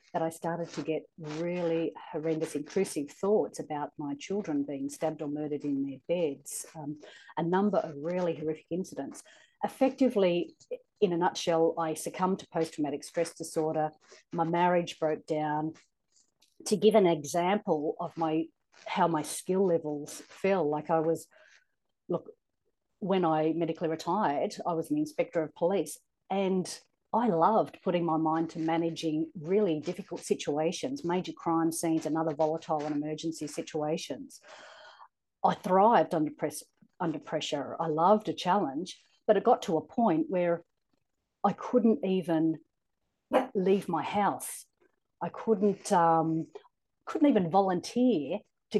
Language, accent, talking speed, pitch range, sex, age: English, Australian, 135 wpm, 160-195 Hz, female, 40-59